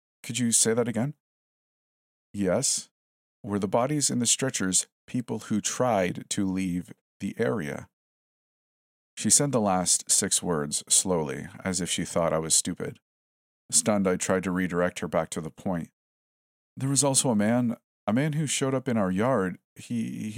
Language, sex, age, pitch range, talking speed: English, male, 40-59, 80-115 Hz, 170 wpm